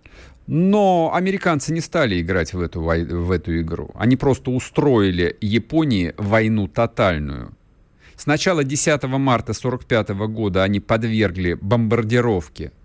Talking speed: 115 wpm